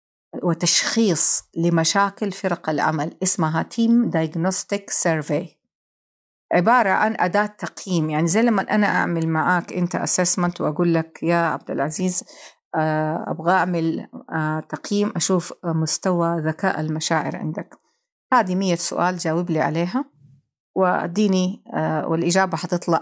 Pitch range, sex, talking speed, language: 165-225 Hz, female, 110 wpm, Arabic